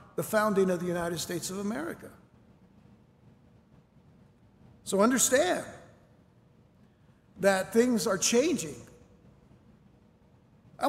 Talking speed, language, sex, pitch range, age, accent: 85 wpm, English, male, 200-255 Hz, 60-79, American